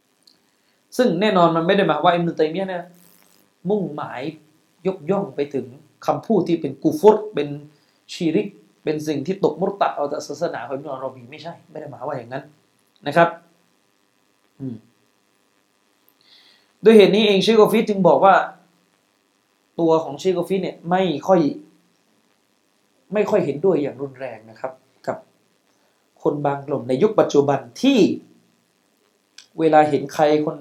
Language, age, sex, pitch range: Thai, 20-39, male, 135-185 Hz